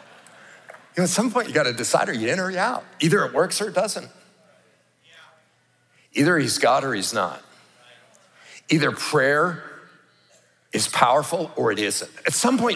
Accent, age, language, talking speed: American, 50-69, English, 175 wpm